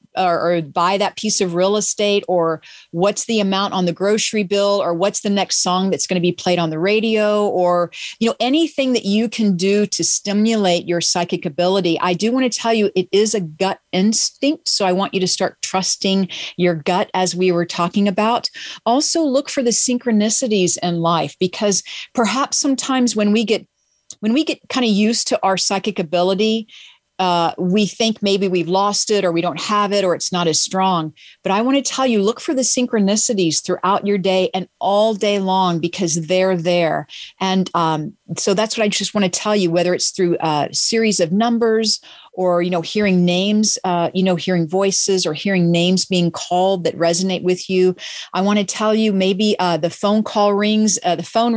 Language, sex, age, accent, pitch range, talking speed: English, female, 40-59, American, 180-215 Hz, 205 wpm